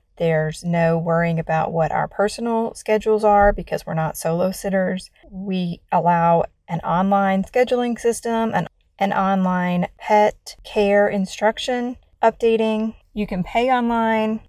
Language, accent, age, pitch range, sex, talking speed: English, American, 30-49, 175-215 Hz, female, 130 wpm